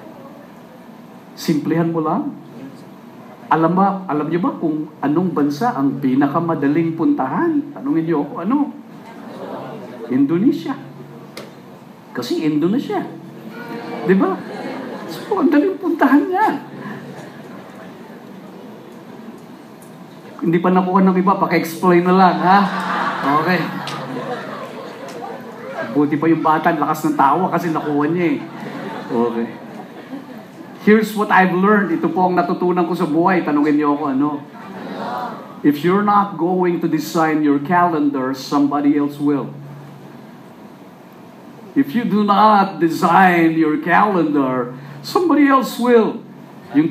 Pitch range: 145-205 Hz